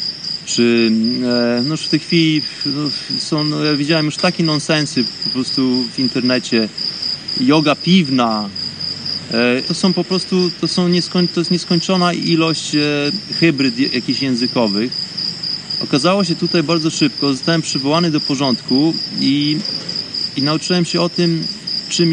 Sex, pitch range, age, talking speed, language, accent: male, 140-175 Hz, 30-49, 130 wpm, Polish, native